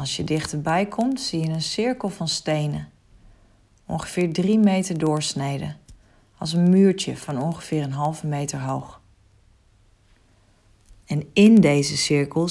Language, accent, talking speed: Dutch, Dutch, 130 wpm